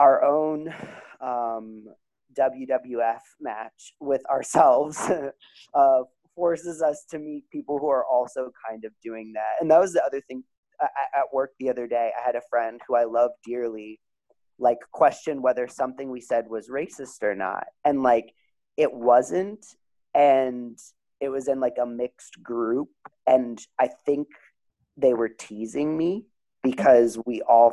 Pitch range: 120-155 Hz